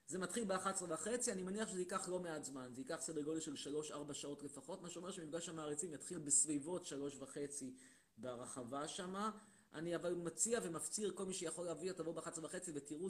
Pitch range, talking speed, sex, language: 145-190 Hz, 180 wpm, male, Hebrew